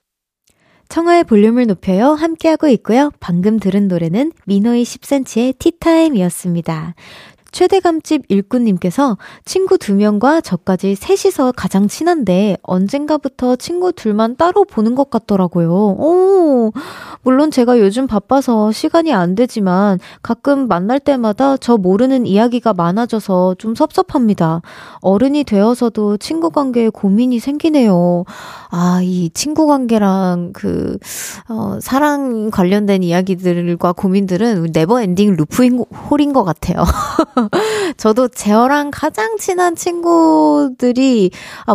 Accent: native